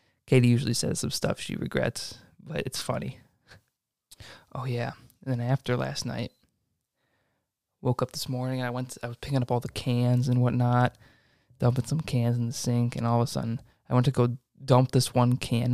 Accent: American